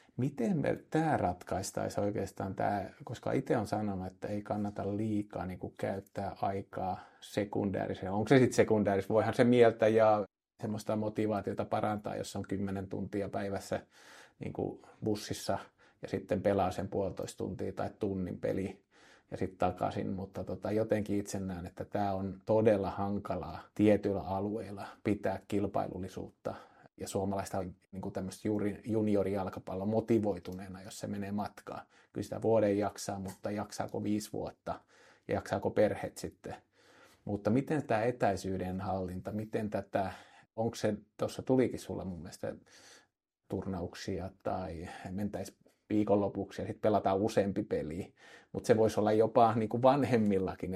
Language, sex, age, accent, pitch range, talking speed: Finnish, male, 30-49, native, 95-110 Hz, 135 wpm